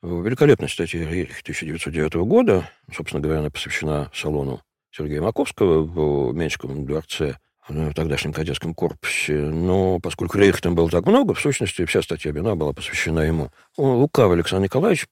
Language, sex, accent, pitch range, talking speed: Russian, male, native, 75-95 Hz, 145 wpm